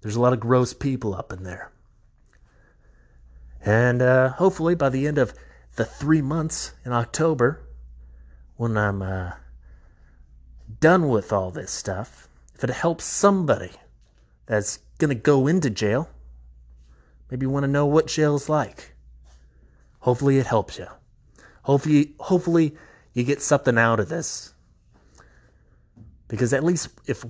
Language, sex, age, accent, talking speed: English, male, 30-49, American, 140 wpm